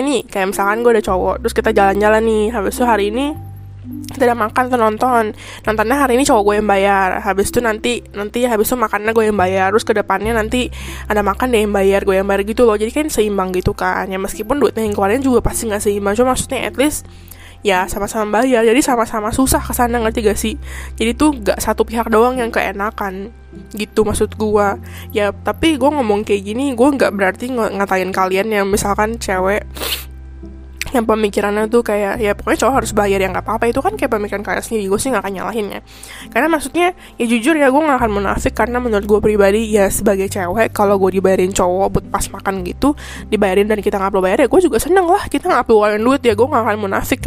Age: 10-29